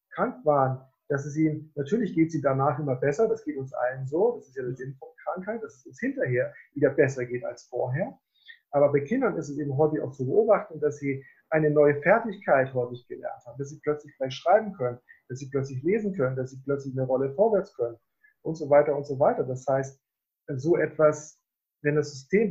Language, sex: German, male